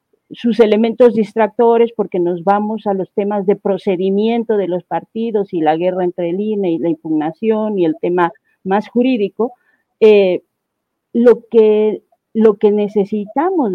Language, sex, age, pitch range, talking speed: Spanish, female, 40-59, 180-225 Hz, 150 wpm